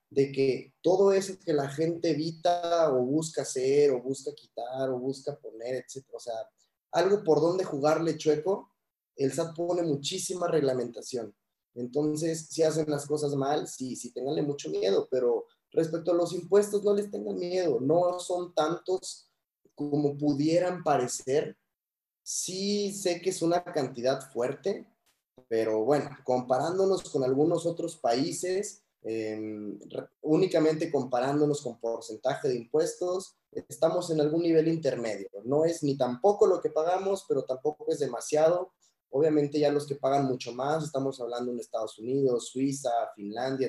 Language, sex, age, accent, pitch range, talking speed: Spanish, male, 20-39, Mexican, 135-185 Hz, 145 wpm